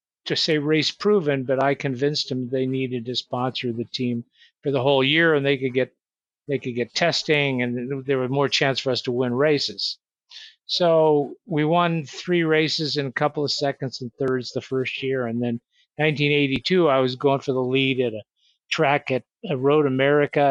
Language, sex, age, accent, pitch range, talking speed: English, male, 50-69, American, 130-150 Hz, 195 wpm